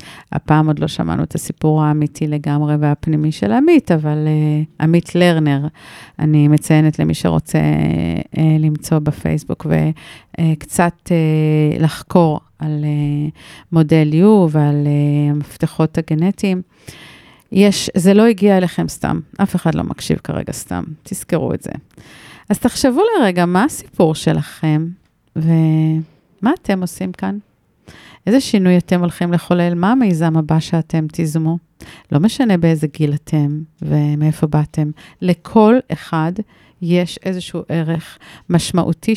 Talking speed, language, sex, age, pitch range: 115 wpm, Hebrew, female, 40-59, 155-185 Hz